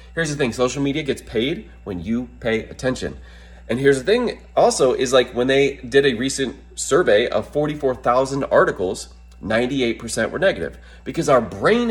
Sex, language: male, English